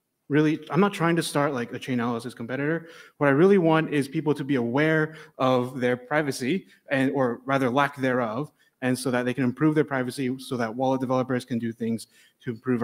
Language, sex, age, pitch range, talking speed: English, male, 20-39, 125-150 Hz, 210 wpm